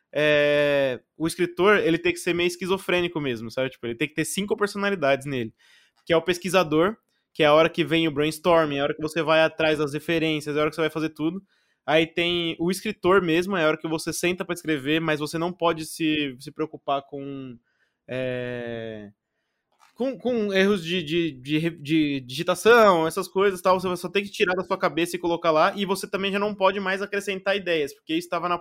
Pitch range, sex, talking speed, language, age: 160-190 Hz, male, 220 wpm, Portuguese, 20-39